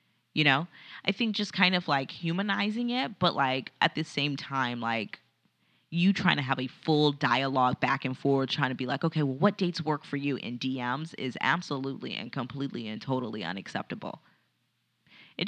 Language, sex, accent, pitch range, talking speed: English, female, American, 130-170 Hz, 185 wpm